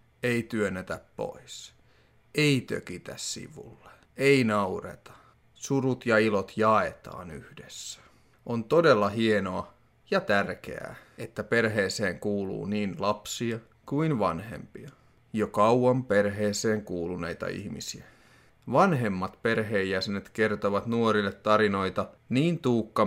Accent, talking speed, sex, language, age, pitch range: native, 95 wpm, male, Finnish, 30-49, 100-120 Hz